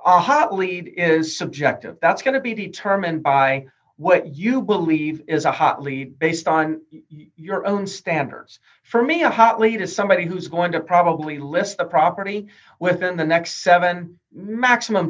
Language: English